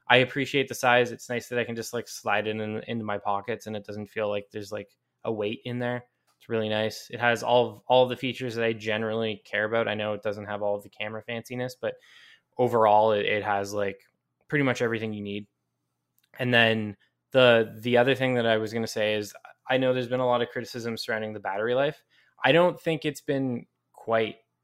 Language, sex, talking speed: English, male, 235 wpm